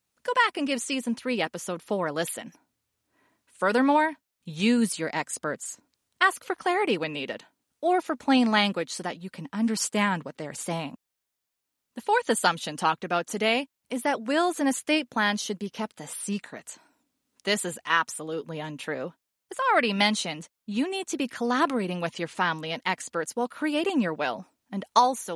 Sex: female